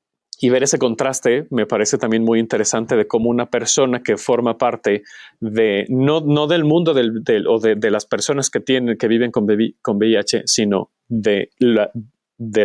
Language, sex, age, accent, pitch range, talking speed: Spanish, male, 30-49, Mexican, 115-150 Hz, 190 wpm